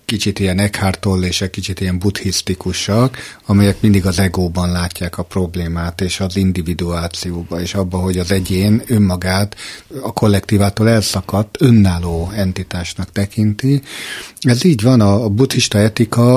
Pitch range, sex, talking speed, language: 90-110 Hz, male, 125 wpm, Hungarian